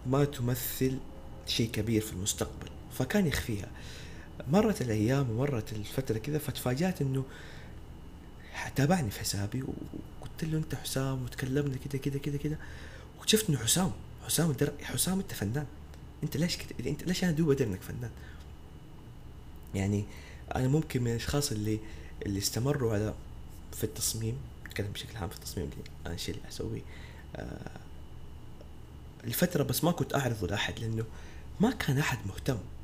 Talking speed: 140 wpm